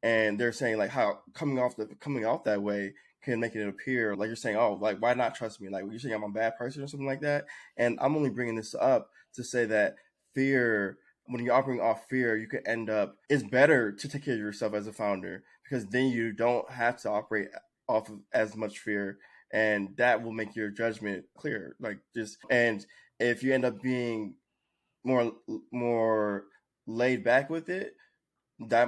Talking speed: 205 wpm